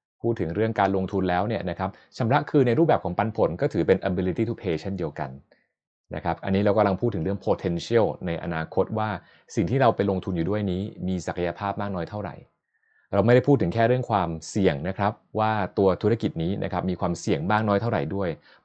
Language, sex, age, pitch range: Thai, male, 30-49, 90-115 Hz